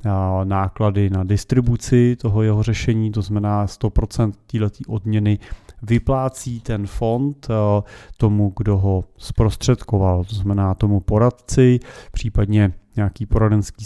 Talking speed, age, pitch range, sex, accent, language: 110 wpm, 30-49, 100-120 Hz, male, native, Czech